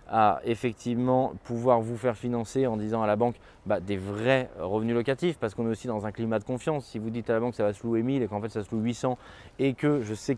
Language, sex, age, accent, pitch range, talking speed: French, male, 20-39, French, 110-145 Hz, 275 wpm